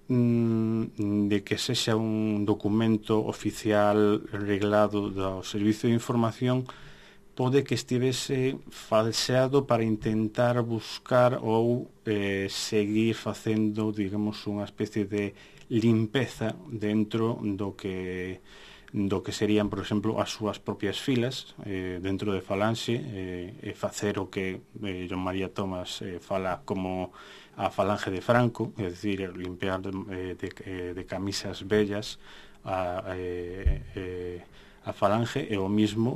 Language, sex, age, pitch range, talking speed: Spanish, male, 30-49, 95-110 Hz, 125 wpm